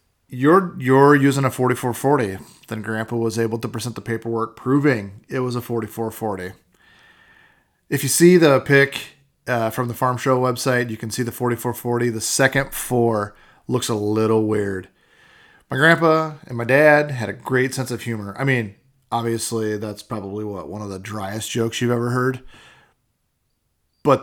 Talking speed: 165 wpm